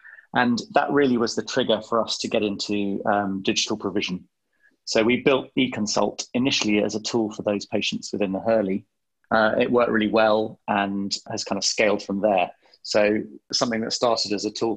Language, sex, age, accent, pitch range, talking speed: English, male, 30-49, British, 105-130 Hz, 190 wpm